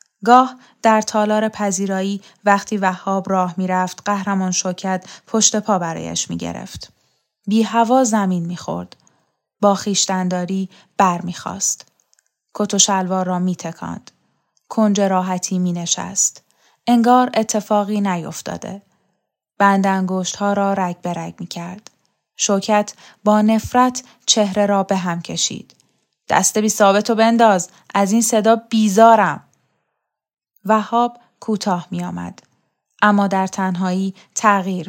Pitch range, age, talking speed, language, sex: 185-215 Hz, 10-29, 110 wpm, Persian, female